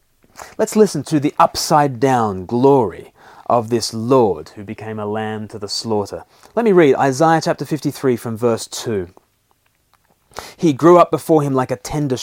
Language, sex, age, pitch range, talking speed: English, male, 30-49, 110-145 Hz, 165 wpm